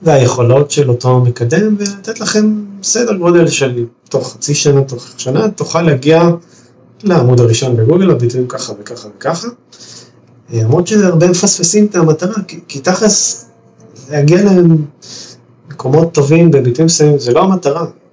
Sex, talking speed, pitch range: male, 130 wpm, 120-165 Hz